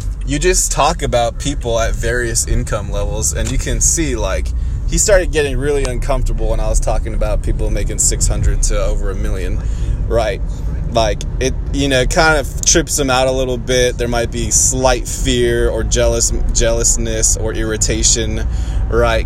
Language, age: English, 20-39